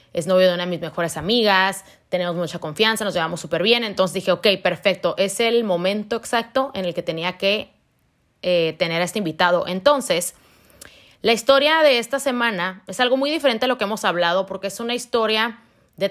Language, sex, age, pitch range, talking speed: Spanish, female, 30-49, 175-205 Hz, 200 wpm